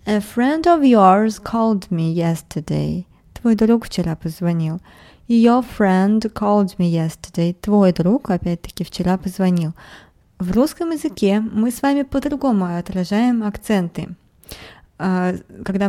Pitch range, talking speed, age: 180-235 Hz, 115 wpm, 20-39